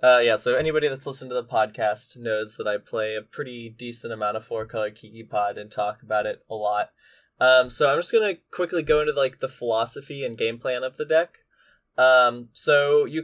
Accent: American